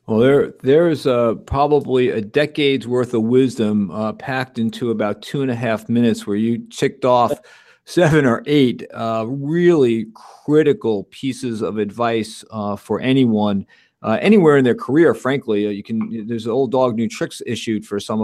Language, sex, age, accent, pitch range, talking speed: English, male, 50-69, American, 110-135 Hz, 175 wpm